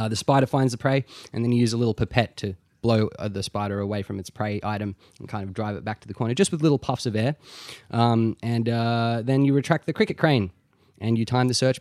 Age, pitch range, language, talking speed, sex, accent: 20-39, 105-130 Hz, English, 265 wpm, male, Australian